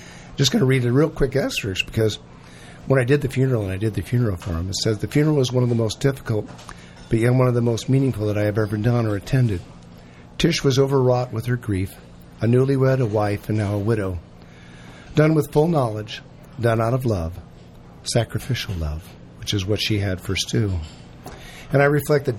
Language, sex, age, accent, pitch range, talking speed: English, male, 50-69, American, 95-130 Hz, 215 wpm